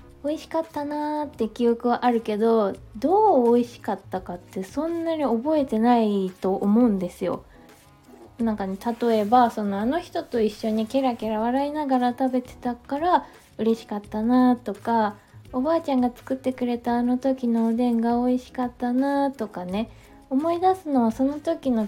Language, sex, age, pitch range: Japanese, female, 20-39, 215-275 Hz